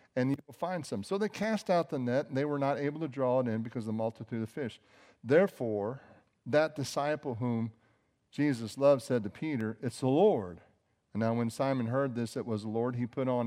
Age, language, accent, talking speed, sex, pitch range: 50-69, English, American, 225 wpm, male, 110-135 Hz